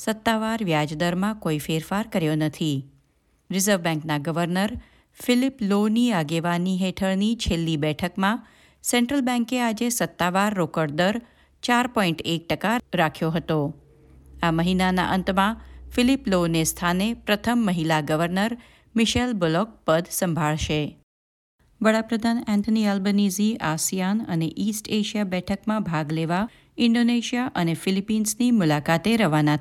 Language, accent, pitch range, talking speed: Gujarati, native, 160-220 Hz, 110 wpm